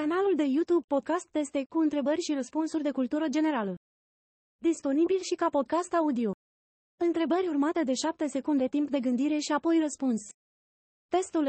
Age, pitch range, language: 30-49, 255-325 Hz, Romanian